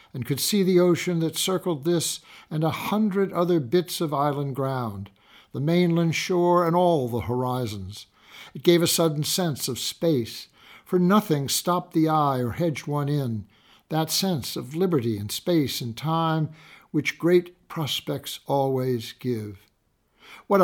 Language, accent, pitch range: English, American, 135-180 Hz